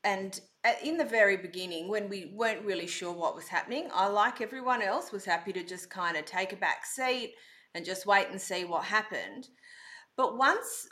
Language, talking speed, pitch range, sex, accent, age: English, 200 wpm, 180-230 Hz, female, Australian, 30-49